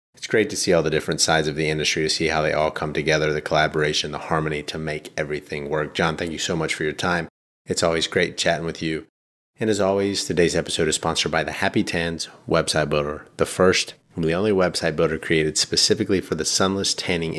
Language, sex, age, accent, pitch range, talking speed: English, male, 30-49, American, 80-95 Hz, 230 wpm